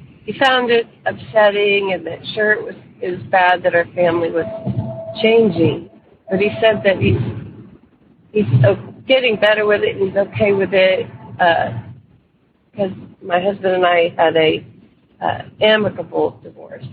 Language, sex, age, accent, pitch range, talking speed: English, female, 40-59, American, 170-220 Hz, 150 wpm